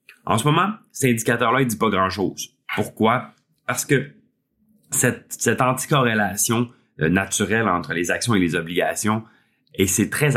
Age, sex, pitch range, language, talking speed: 30-49, male, 90-120 Hz, French, 150 wpm